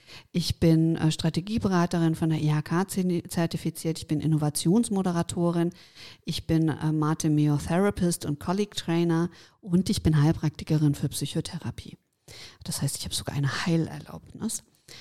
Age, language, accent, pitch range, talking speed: 50-69, German, German, 160-185 Hz, 110 wpm